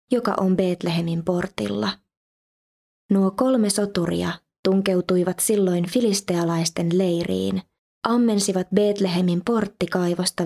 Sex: female